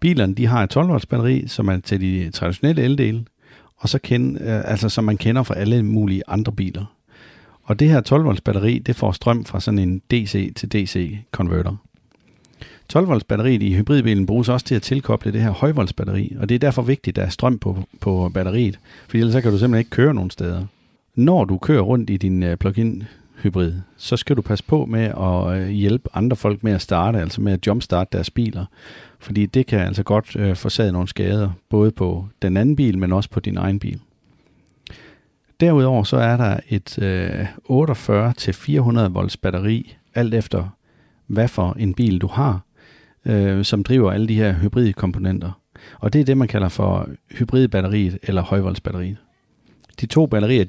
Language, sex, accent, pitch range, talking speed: Danish, male, native, 95-125 Hz, 190 wpm